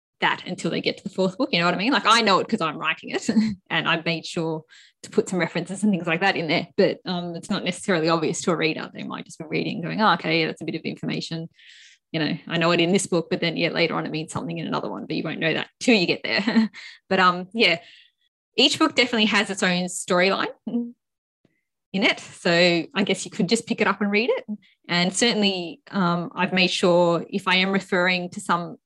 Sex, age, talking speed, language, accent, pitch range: female, 20-39, 250 wpm, English, Australian, 170-215 Hz